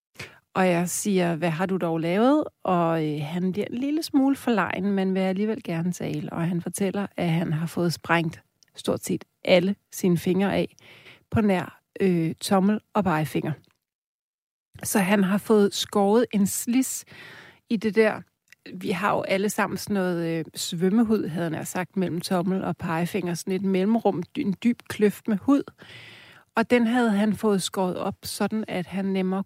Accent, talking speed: native, 175 wpm